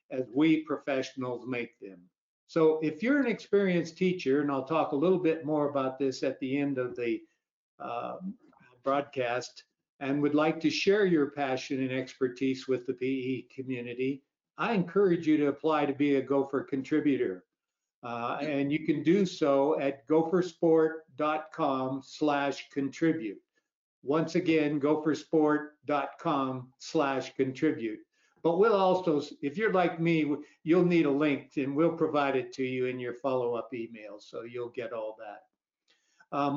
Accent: American